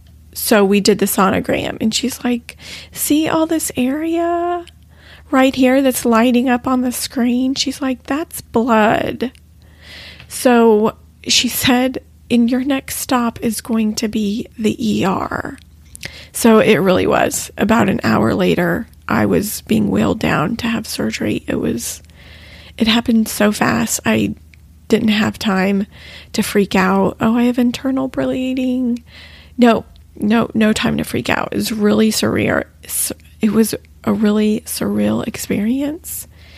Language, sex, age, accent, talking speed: English, female, 30-49, American, 145 wpm